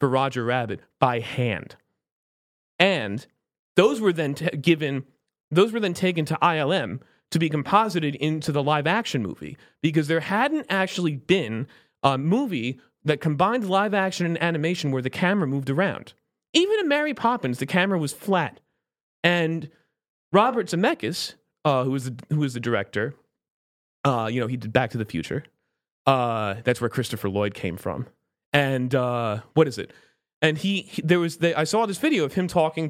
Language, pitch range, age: English, 140-205 Hz, 30-49